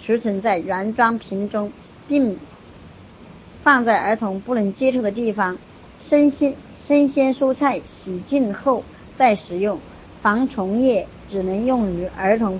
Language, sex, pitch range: Chinese, male, 195-255 Hz